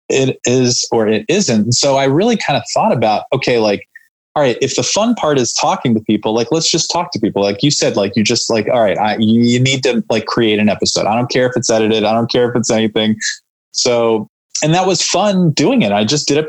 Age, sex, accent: 20-39, male, American